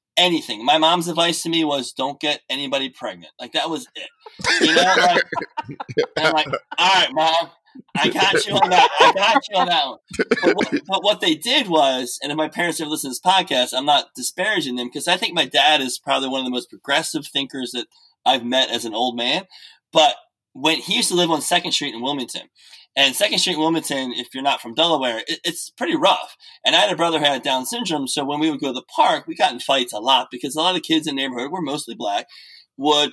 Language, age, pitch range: English, 20-39, 140-195 Hz